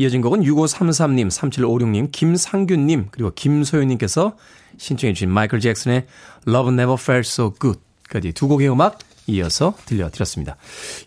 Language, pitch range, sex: Korean, 110-165 Hz, male